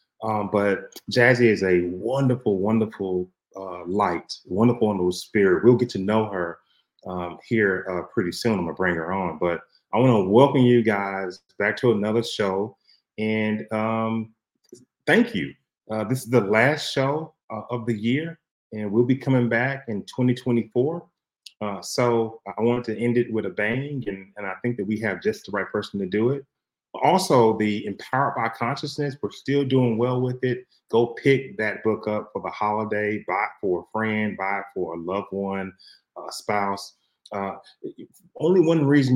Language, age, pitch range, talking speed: English, 30-49, 100-125 Hz, 180 wpm